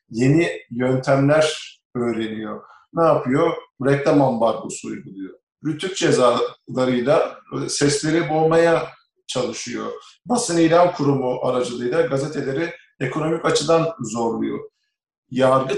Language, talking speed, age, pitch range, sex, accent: English, 85 wpm, 50-69, 125-160 Hz, male, Turkish